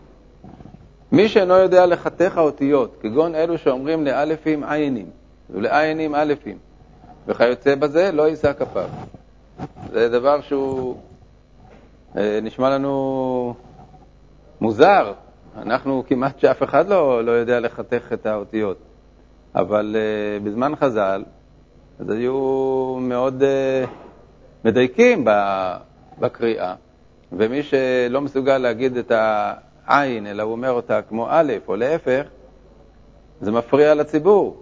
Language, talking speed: Hebrew, 100 wpm